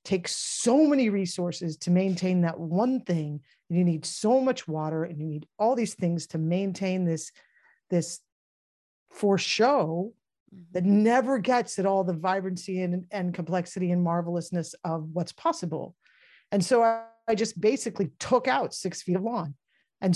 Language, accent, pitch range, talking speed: English, American, 175-235 Hz, 160 wpm